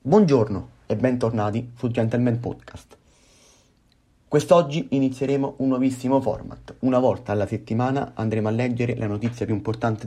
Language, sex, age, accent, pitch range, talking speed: Italian, male, 30-49, native, 105-125 Hz, 130 wpm